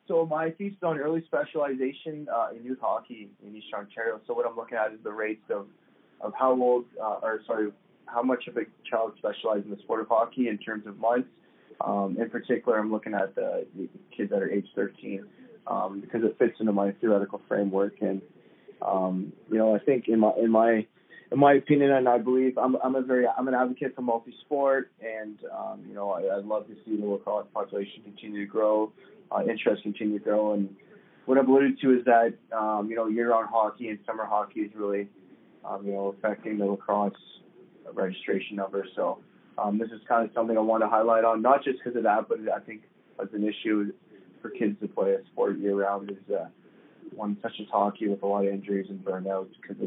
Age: 20-39